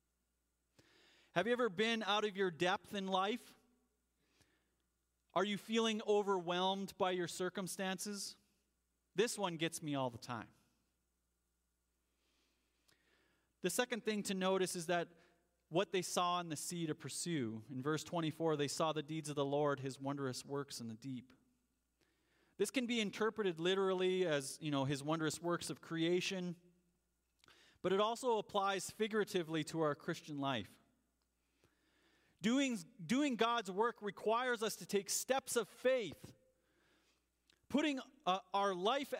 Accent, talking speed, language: American, 140 wpm, English